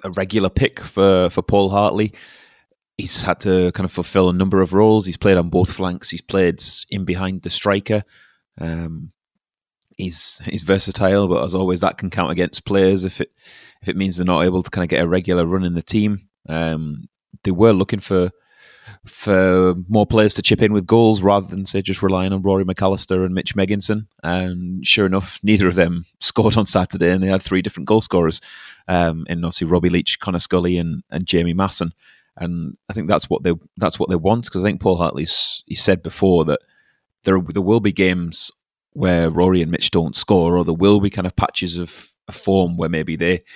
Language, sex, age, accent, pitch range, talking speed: English, male, 30-49, British, 90-100 Hz, 210 wpm